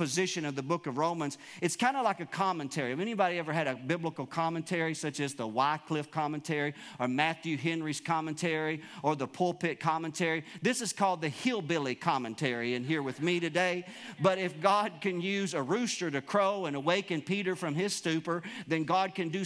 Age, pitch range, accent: 50-69, 150-180 Hz, American